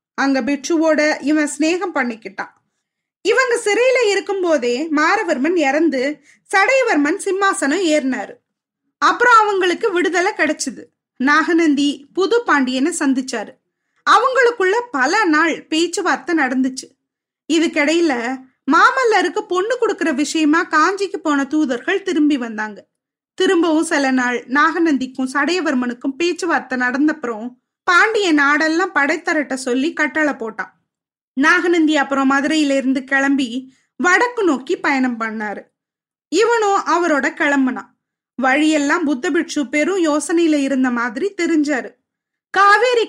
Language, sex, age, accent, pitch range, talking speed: Tamil, female, 20-39, native, 275-355 Hz, 100 wpm